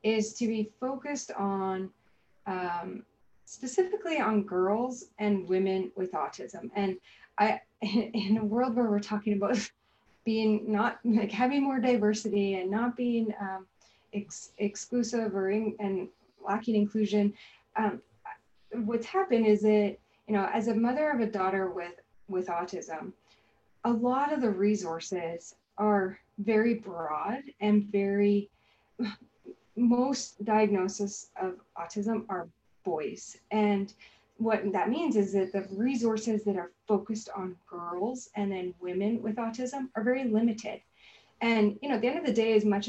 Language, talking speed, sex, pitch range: English, 145 wpm, female, 200-240 Hz